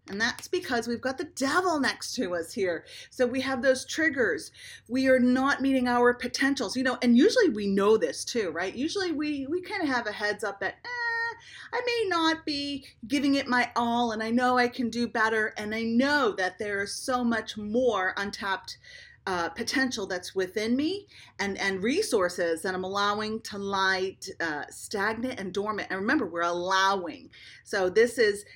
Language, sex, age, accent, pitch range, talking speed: English, female, 30-49, American, 200-280 Hz, 190 wpm